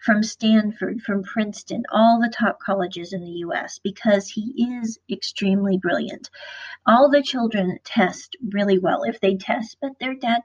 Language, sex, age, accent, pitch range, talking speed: English, female, 40-59, American, 210-280 Hz, 160 wpm